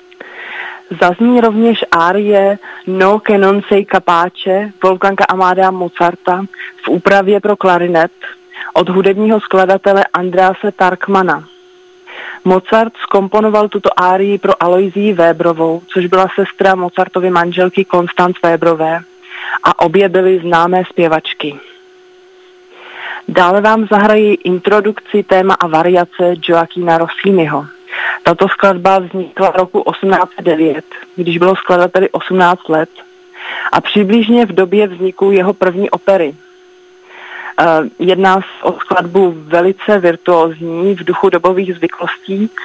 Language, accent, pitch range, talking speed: Czech, native, 175-205 Hz, 105 wpm